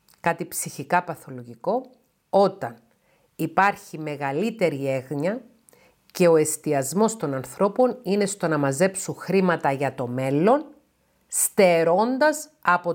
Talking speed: 100 wpm